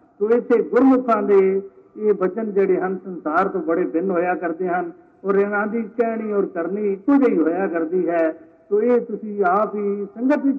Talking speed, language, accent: 160 wpm, Hindi, native